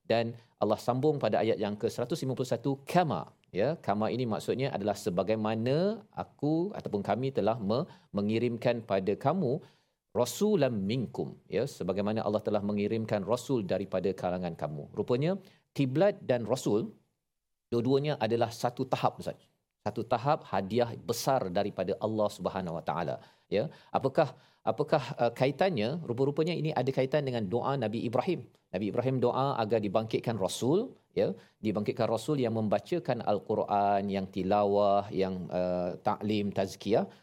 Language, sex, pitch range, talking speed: Malayalam, male, 105-145 Hz, 130 wpm